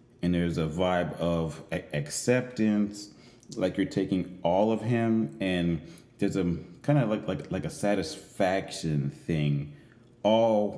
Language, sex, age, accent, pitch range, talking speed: English, male, 30-49, American, 85-105 Hz, 135 wpm